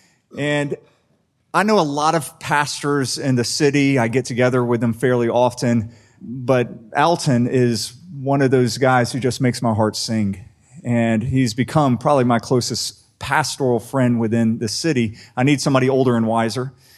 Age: 30-49